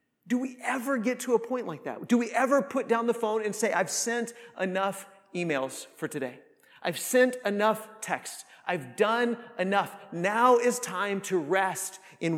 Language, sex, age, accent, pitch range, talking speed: English, male, 30-49, American, 190-245 Hz, 180 wpm